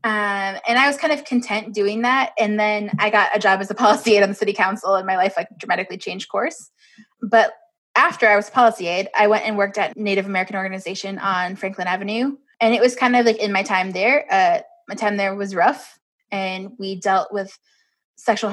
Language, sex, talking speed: English, female, 225 wpm